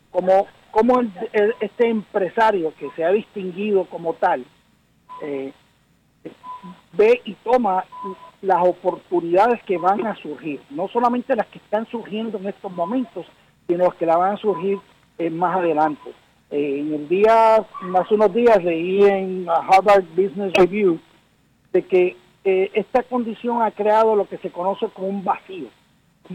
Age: 60-79